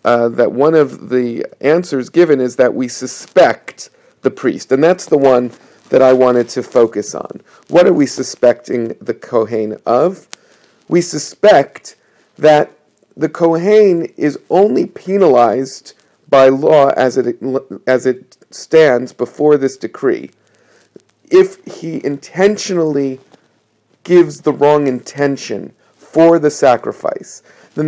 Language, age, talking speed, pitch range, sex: English, 50-69, 125 wpm, 125-160 Hz, male